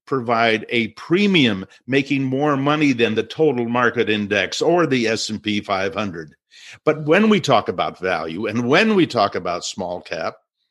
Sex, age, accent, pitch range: male, 50-69, American, 120-160 Hz